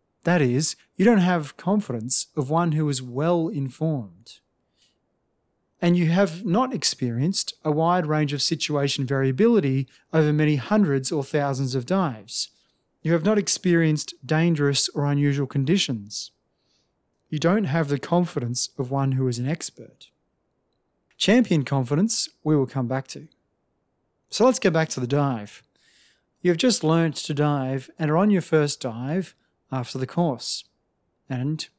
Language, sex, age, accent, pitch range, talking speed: English, male, 30-49, Australian, 140-180 Hz, 145 wpm